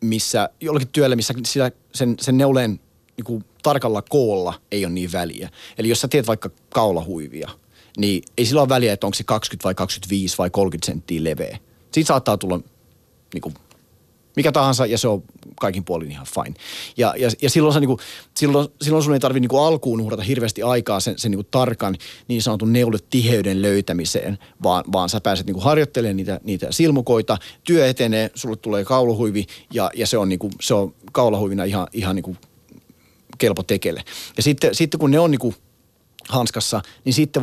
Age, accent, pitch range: 30-49, native, 95-130 Hz